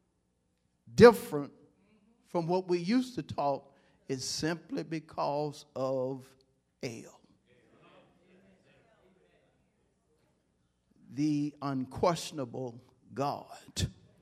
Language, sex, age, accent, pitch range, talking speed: English, male, 50-69, American, 110-175 Hz, 65 wpm